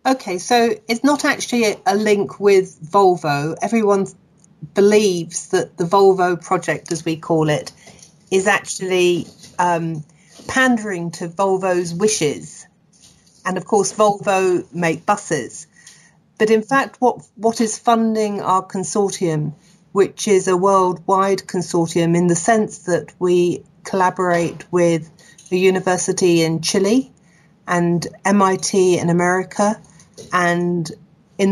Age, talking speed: 40-59, 120 wpm